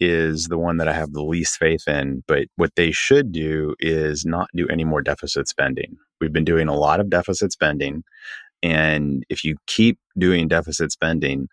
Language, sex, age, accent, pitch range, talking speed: English, male, 30-49, American, 75-90 Hz, 195 wpm